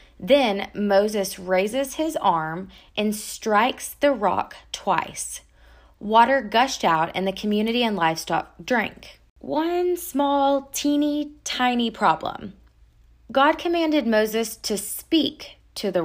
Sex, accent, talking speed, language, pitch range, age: female, American, 115 wpm, English, 175-260 Hz, 20-39